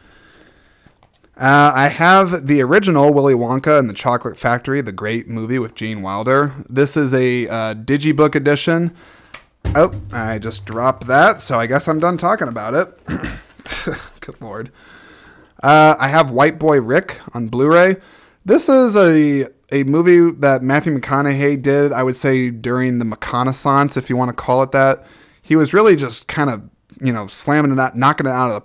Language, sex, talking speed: English, male, 175 wpm